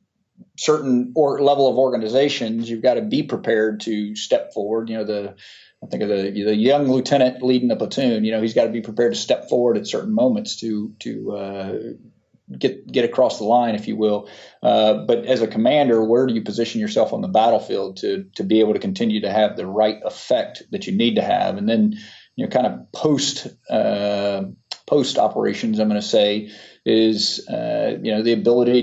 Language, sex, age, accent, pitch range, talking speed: English, male, 40-59, American, 105-135 Hz, 205 wpm